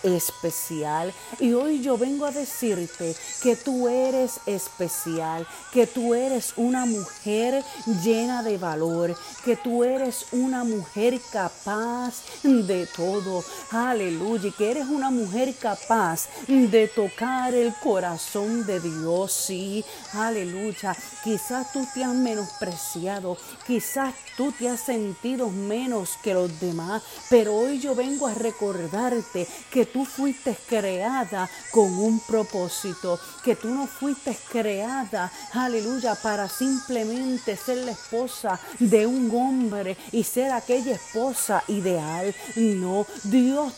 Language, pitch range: Spanish, 195-250 Hz